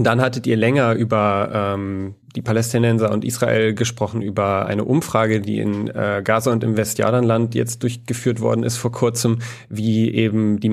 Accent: German